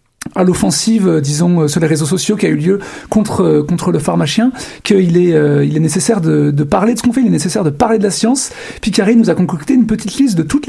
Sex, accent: male, French